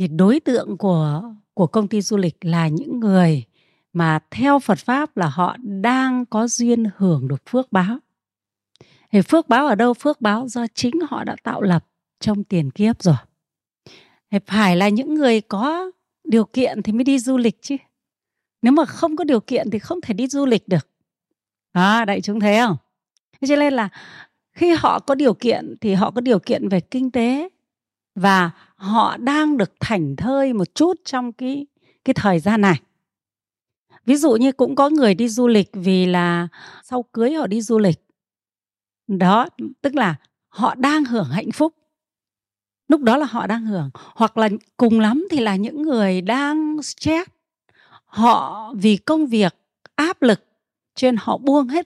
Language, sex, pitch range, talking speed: Vietnamese, female, 190-265 Hz, 180 wpm